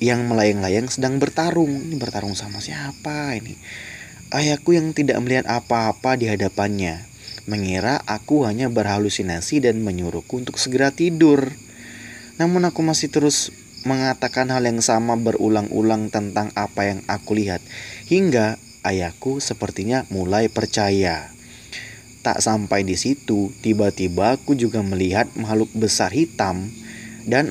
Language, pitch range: Indonesian, 105-135 Hz